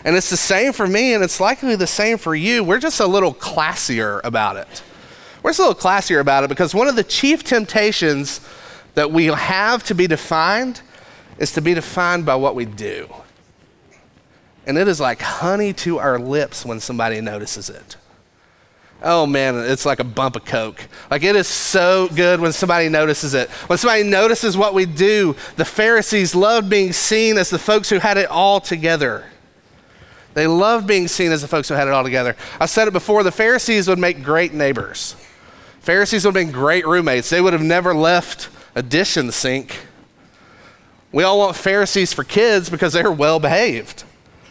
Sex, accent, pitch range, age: male, American, 145-200 Hz, 30-49